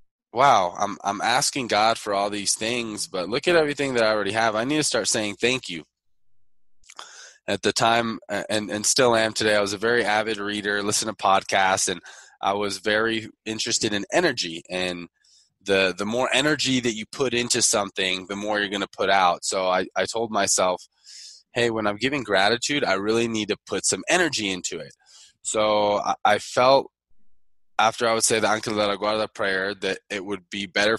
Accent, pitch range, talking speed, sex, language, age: American, 100-115 Hz, 200 wpm, male, English, 20-39